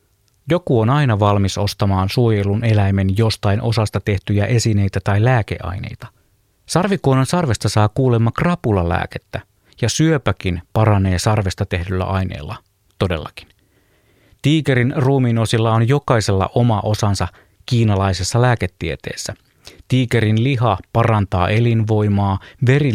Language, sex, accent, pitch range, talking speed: Finnish, male, native, 95-120 Hz, 100 wpm